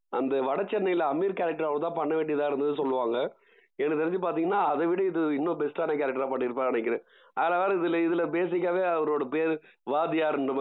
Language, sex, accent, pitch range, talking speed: Tamil, male, native, 150-215 Hz, 160 wpm